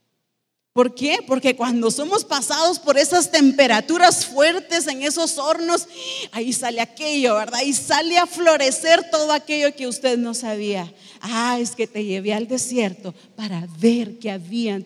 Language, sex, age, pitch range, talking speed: English, female, 40-59, 205-280 Hz, 160 wpm